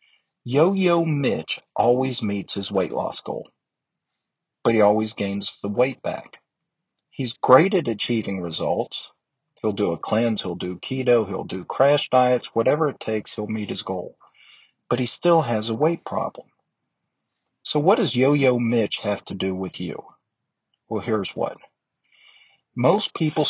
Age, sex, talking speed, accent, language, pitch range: 50-69, male, 155 wpm, American, English, 105-140 Hz